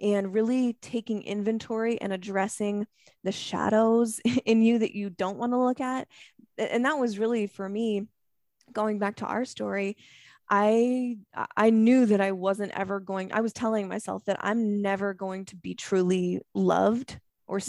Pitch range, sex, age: 190-225 Hz, female, 20-39